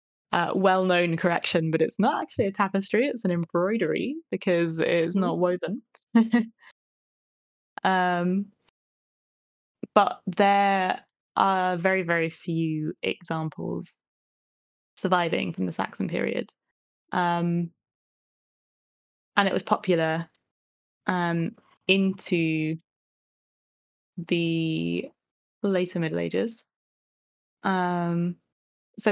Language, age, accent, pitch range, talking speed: English, 20-39, British, 165-195 Hz, 85 wpm